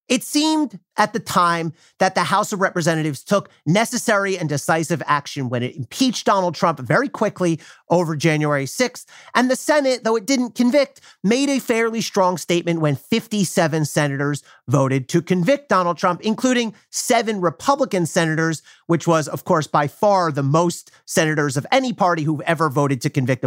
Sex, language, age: male, English, 40-59